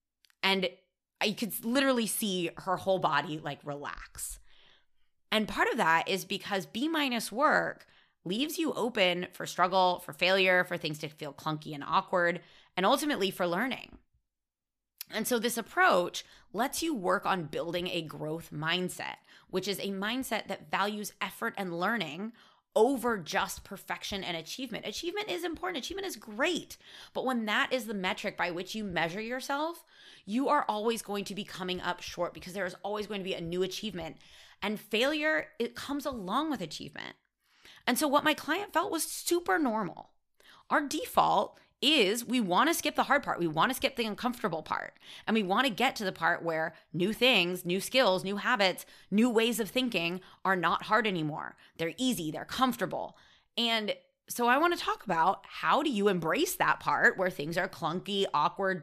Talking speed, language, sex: 180 wpm, English, female